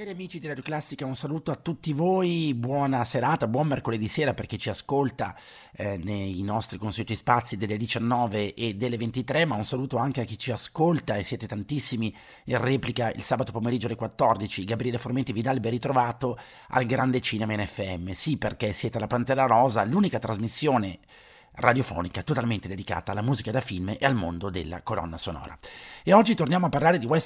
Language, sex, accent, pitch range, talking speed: Italian, male, native, 105-130 Hz, 185 wpm